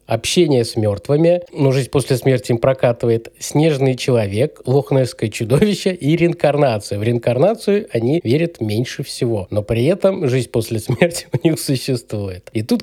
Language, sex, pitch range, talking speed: Russian, male, 115-155 Hz, 150 wpm